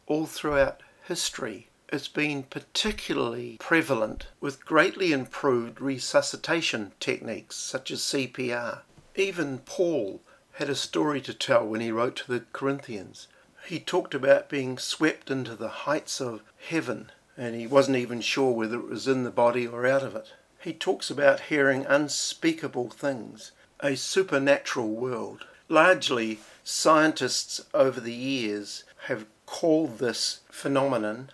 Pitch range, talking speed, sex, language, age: 120-140 Hz, 135 wpm, male, English, 50-69